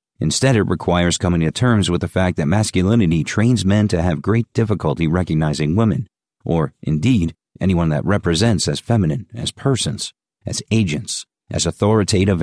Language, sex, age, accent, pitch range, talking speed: English, male, 50-69, American, 80-105 Hz, 155 wpm